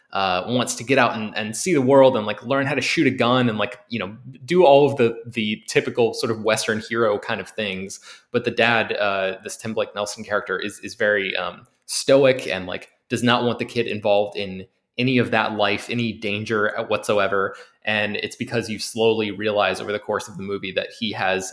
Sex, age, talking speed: male, 20-39, 225 wpm